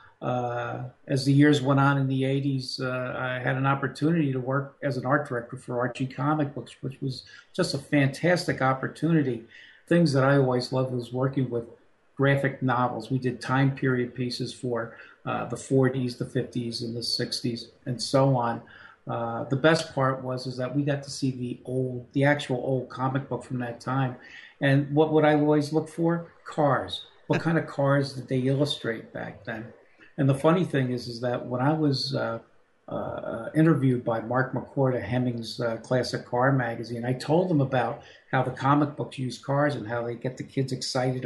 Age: 50-69